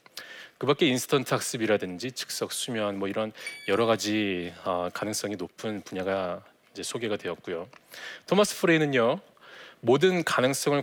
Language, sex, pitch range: Korean, male, 110-165 Hz